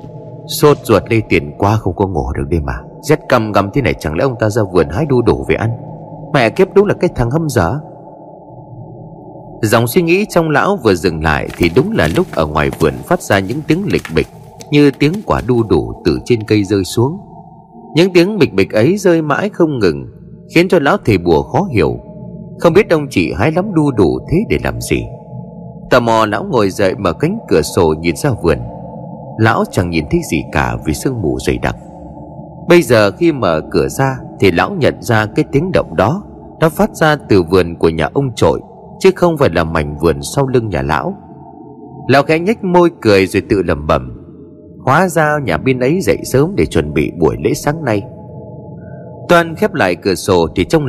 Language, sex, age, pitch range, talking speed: Vietnamese, male, 30-49, 105-170 Hz, 210 wpm